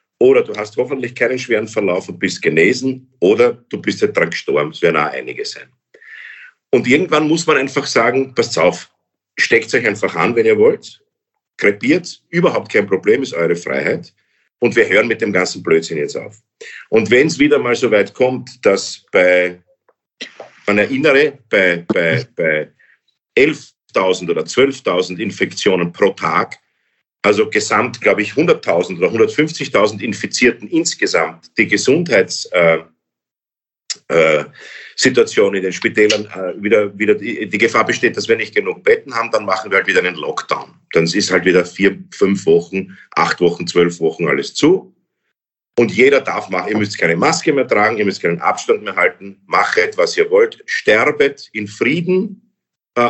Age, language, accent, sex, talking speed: 50-69, German, German, male, 165 wpm